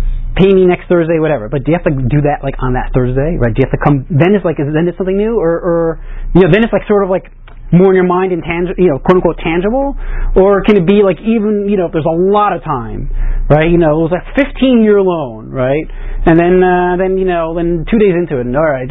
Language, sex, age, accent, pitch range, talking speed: English, male, 30-49, American, 145-190 Hz, 280 wpm